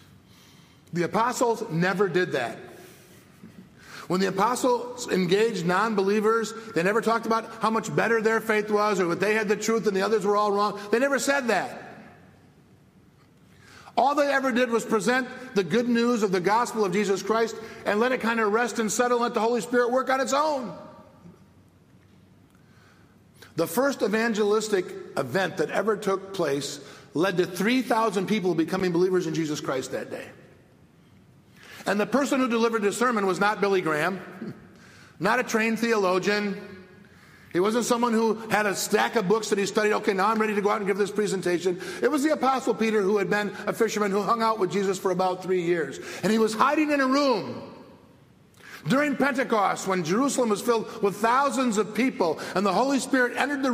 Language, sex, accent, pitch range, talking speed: English, male, American, 195-240 Hz, 185 wpm